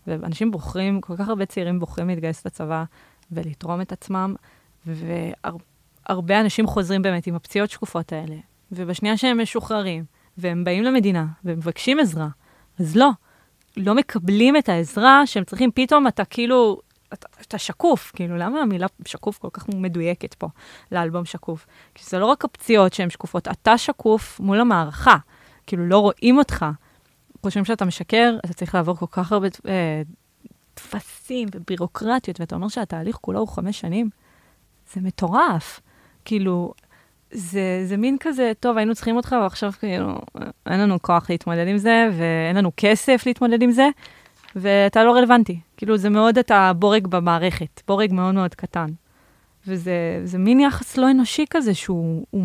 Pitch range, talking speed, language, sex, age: 175-225 Hz, 150 wpm, Hebrew, female, 20-39